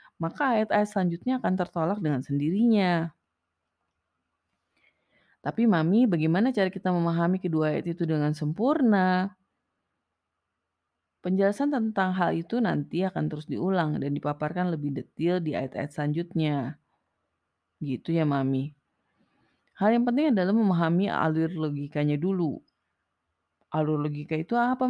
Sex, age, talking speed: female, 20-39, 115 wpm